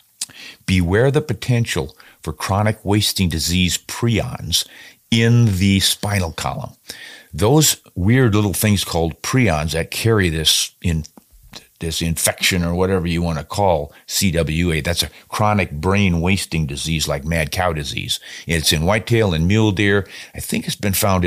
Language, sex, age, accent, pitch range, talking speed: English, male, 50-69, American, 85-110 Hz, 145 wpm